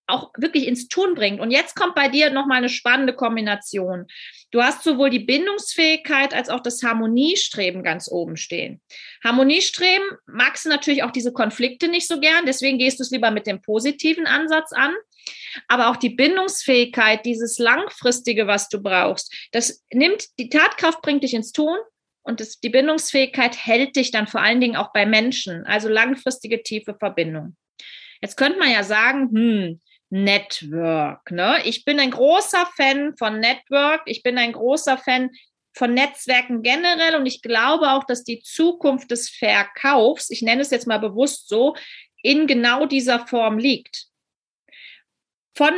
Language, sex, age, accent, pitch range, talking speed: German, female, 30-49, German, 230-305 Hz, 165 wpm